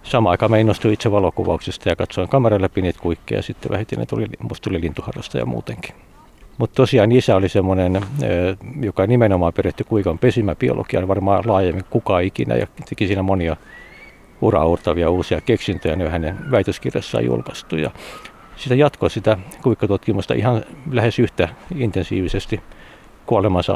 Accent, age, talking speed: native, 60-79, 135 wpm